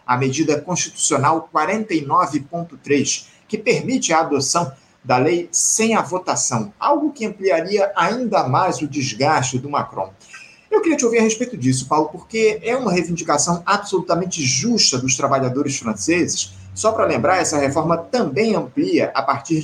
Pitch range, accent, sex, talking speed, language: 145-200 Hz, Brazilian, male, 145 wpm, Portuguese